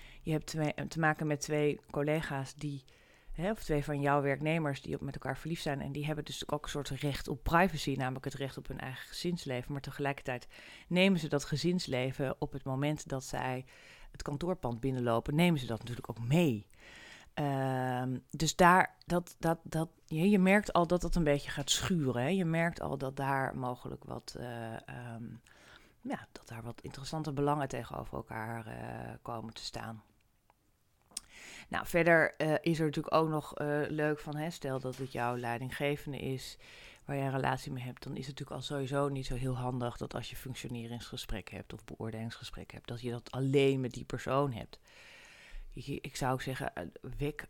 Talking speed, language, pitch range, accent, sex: 190 wpm, Dutch, 125-150 Hz, Dutch, female